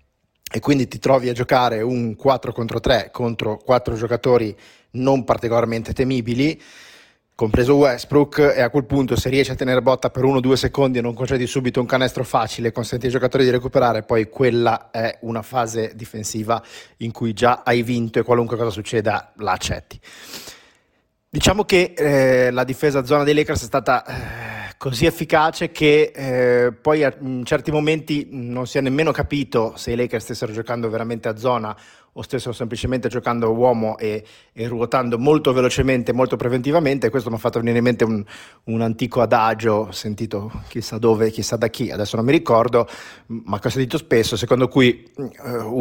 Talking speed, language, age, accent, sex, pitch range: 175 wpm, Italian, 30-49, native, male, 115-135 Hz